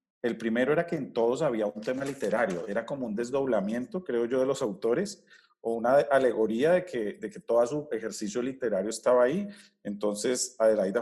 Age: 40-59